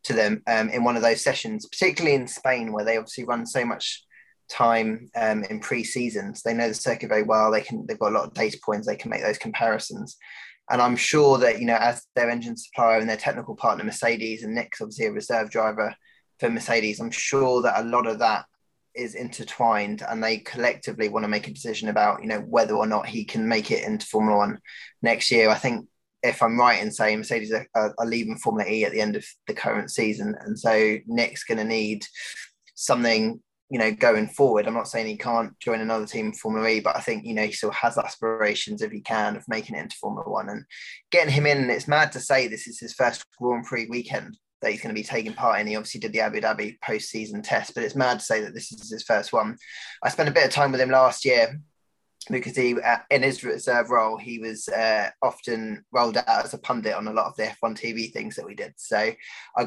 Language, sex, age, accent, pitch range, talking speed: English, male, 10-29, British, 110-125 Hz, 240 wpm